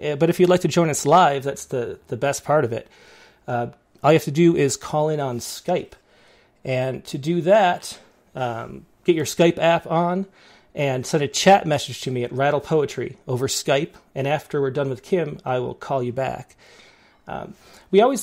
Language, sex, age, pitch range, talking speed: English, male, 30-49, 130-170 Hz, 205 wpm